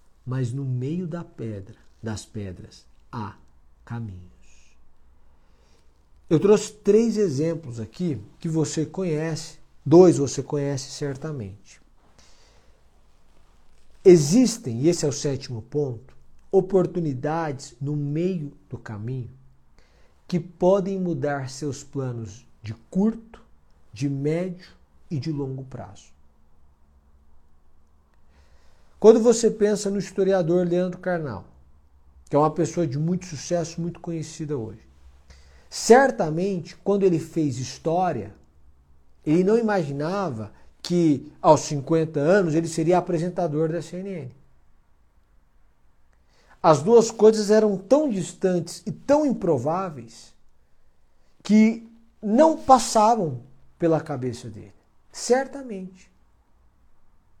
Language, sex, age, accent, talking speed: Portuguese, male, 50-69, Brazilian, 100 wpm